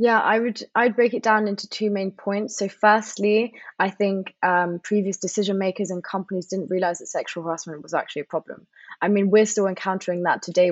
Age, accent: 20-39, British